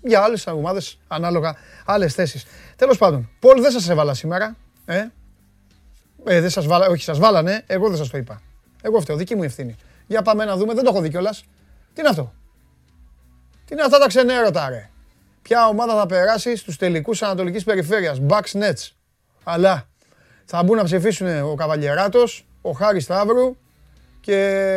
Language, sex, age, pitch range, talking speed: Greek, male, 30-49, 120-195 Hz, 165 wpm